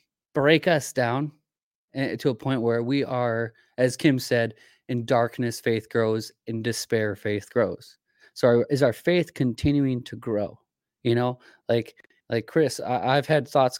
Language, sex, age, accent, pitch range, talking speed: English, male, 20-39, American, 110-140 Hz, 150 wpm